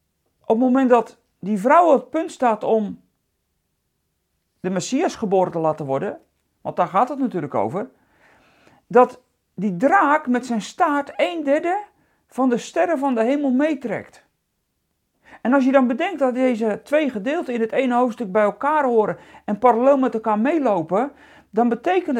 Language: Dutch